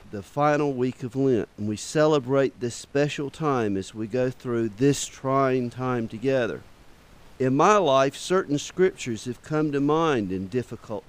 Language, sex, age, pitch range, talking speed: English, male, 50-69, 115-150 Hz, 160 wpm